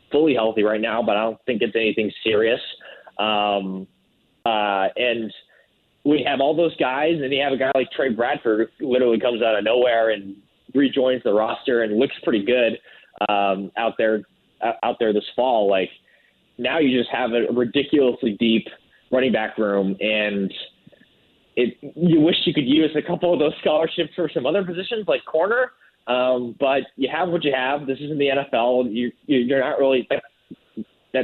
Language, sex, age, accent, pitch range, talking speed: English, male, 20-39, American, 105-145 Hz, 180 wpm